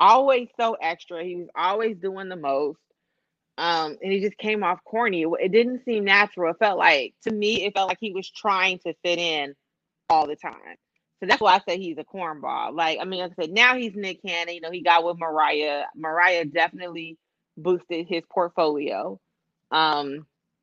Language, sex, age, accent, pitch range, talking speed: English, female, 30-49, American, 170-230 Hz, 195 wpm